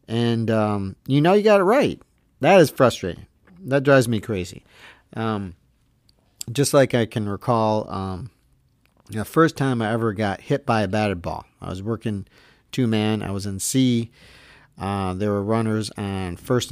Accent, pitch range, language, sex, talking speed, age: American, 100-135 Hz, English, male, 170 wpm, 40-59